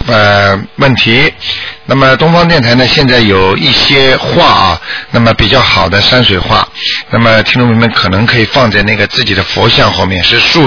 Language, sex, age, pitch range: Chinese, male, 50-69, 110-165 Hz